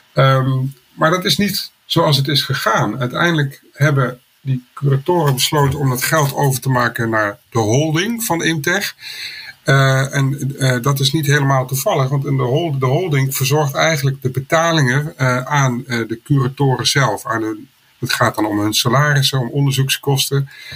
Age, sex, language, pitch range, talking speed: 50-69, male, Dutch, 125-145 Hz, 170 wpm